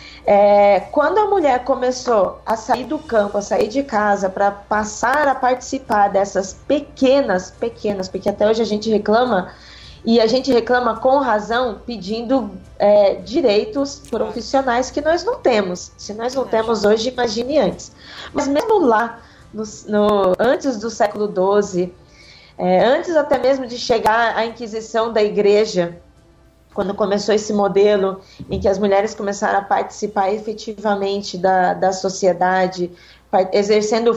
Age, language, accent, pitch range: 20-39, Portuguese, Brazilian, 200-255 Hz